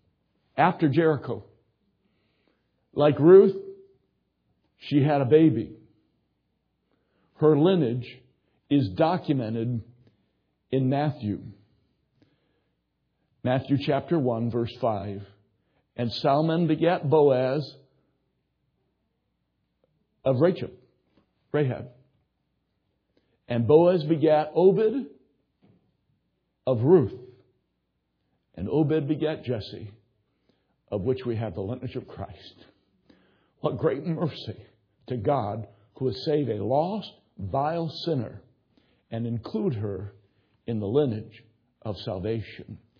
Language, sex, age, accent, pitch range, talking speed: English, male, 60-79, American, 110-155 Hz, 90 wpm